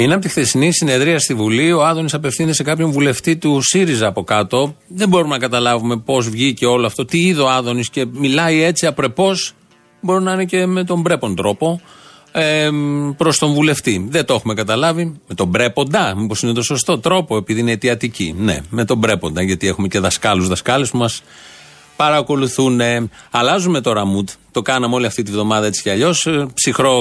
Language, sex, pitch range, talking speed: Greek, male, 115-160 Hz, 185 wpm